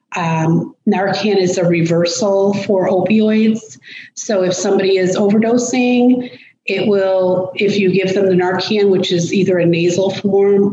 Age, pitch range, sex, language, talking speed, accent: 30-49, 175-210 Hz, female, English, 145 wpm, American